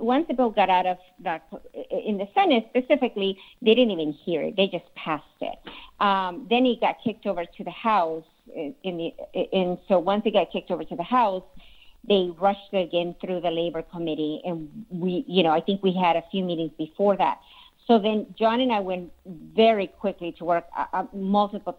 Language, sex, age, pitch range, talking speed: English, female, 50-69, 170-200 Hz, 205 wpm